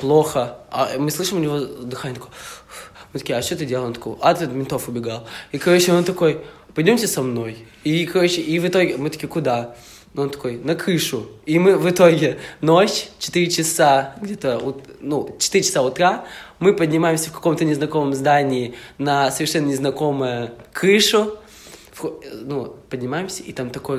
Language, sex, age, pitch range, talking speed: Russian, male, 20-39, 125-160 Hz, 165 wpm